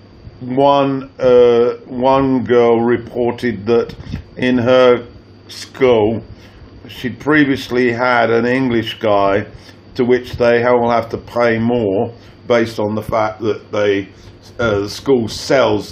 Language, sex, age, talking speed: English, male, 50-69, 125 wpm